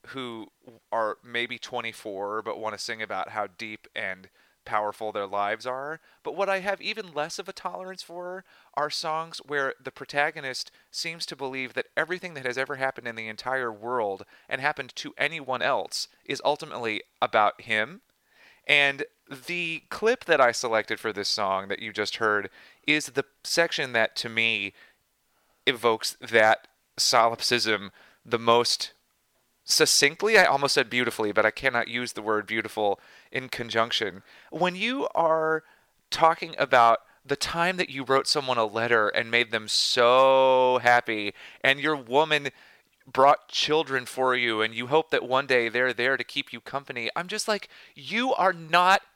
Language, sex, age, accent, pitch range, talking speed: English, male, 30-49, American, 115-175 Hz, 165 wpm